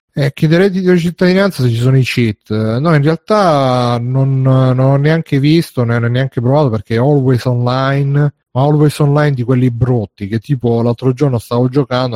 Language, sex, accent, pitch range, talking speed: Italian, male, native, 110-135 Hz, 190 wpm